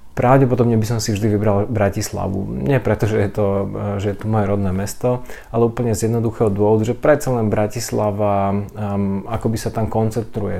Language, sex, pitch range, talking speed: Slovak, male, 100-115 Hz, 170 wpm